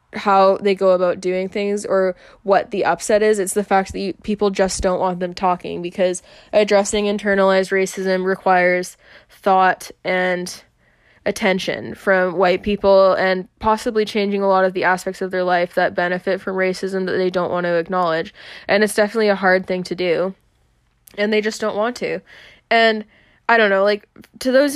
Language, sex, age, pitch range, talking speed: English, female, 10-29, 180-205 Hz, 180 wpm